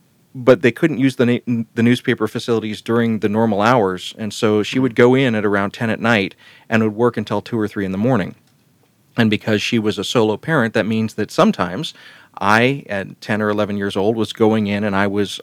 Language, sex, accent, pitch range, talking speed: English, male, American, 100-115 Hz, 220 wpm